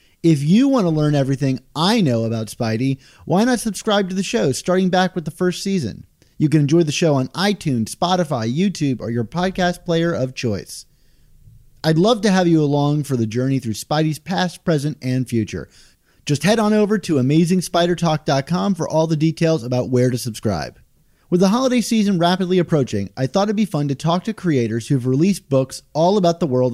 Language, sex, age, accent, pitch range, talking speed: English, male, 30-49, American, 130-180 Hz, 200 wpm